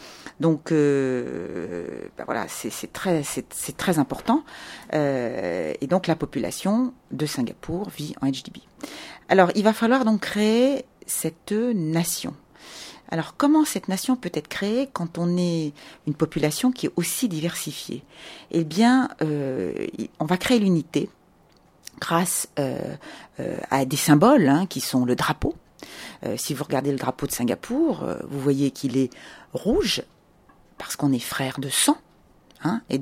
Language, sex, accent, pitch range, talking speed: French, female, French, 140-210 Hz, 150 wpm